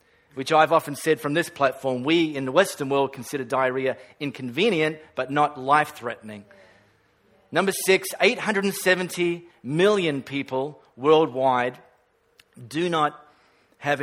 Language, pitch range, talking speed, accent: English, 140-195 Hz, 115 wpm, Australian